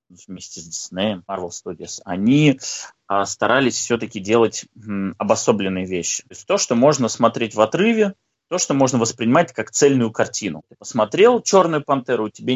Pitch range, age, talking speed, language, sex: 100-135 Hz, 20-39, 140 wpm, Russian, male